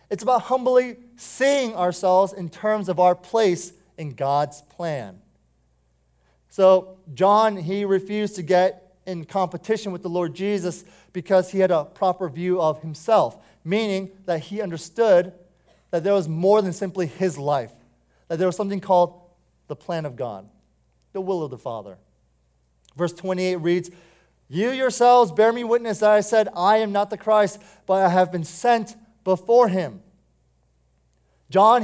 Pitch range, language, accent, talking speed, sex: 170-205 Hz, English, American, 155 wpm, male